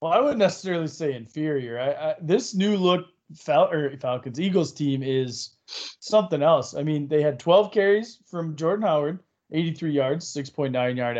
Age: 20-39